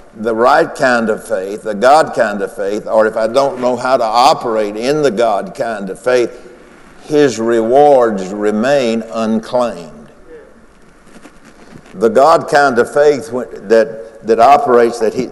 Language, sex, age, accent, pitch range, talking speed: English, male, 60-79, American, 115-140 Hz, 150 wpm